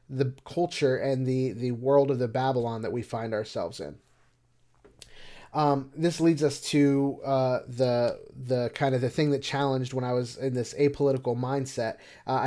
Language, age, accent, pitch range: English, 30-49, American, 125-145 Hz